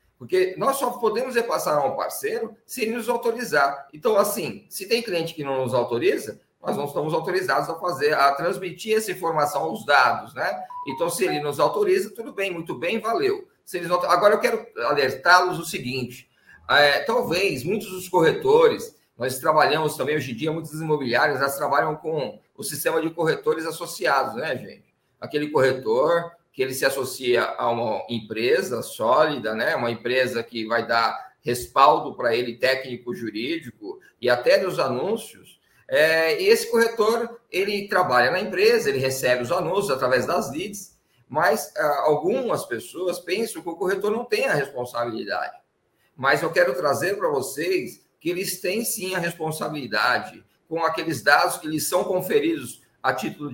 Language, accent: Portuguese, Brazilian